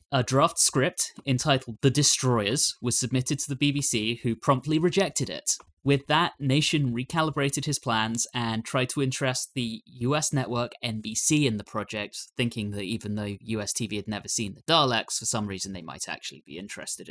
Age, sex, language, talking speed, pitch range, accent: 20-39, male, English, 180 wpm, 110-140 Hz, British